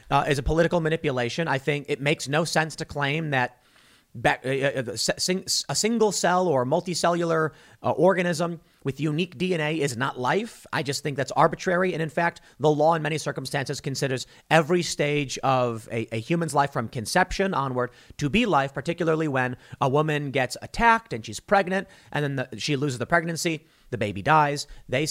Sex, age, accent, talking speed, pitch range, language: male, 40-59, American, 180 wpm, 125-175 Hz, English